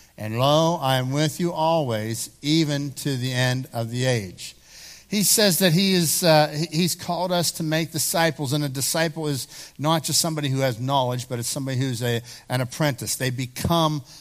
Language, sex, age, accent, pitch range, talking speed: English, male, 60-79, American, 130-160 Hz, 190 wpm